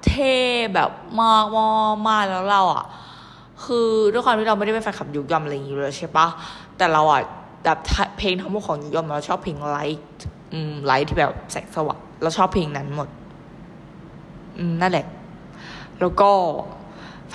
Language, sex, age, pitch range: Thai, female, 20-39, 155-195 Hz